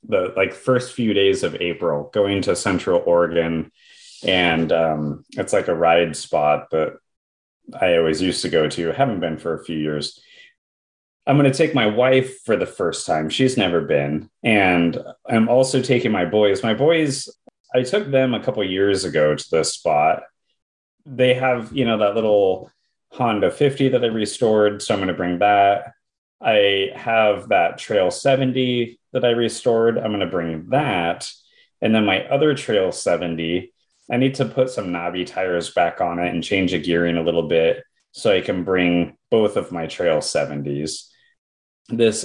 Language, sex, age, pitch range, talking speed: English, male, 30-49, 85-130 Hz, 180 wpm